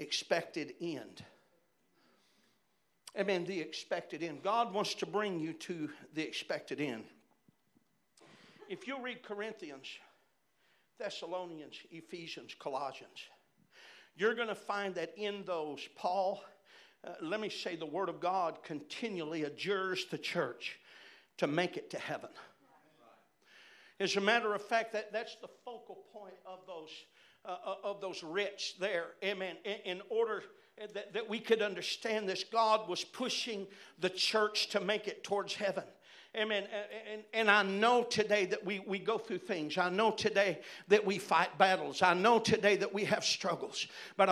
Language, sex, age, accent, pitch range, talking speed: English, male, 50-69, American, 185-225 Hz, 150 wpm